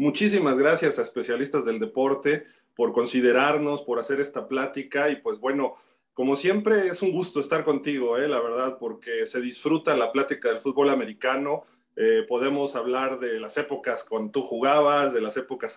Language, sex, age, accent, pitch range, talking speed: Spanish, male, 30-49, Mexican, 130-180 Hz, 170 wpm